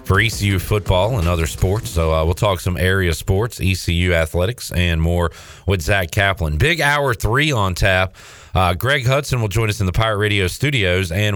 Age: 40-59